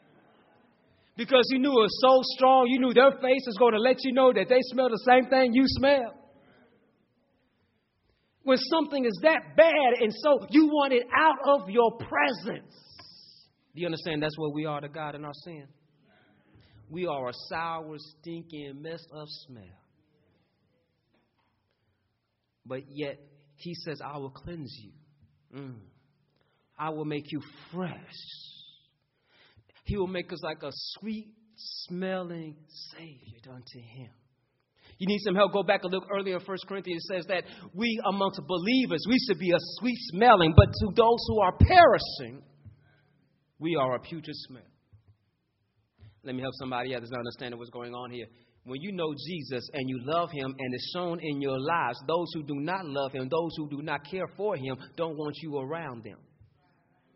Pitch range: 130-200 Hz